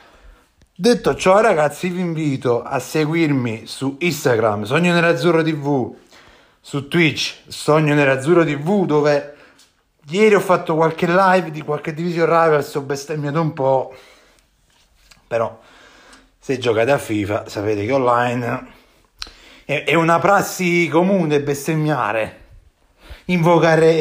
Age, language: 30-49, Italian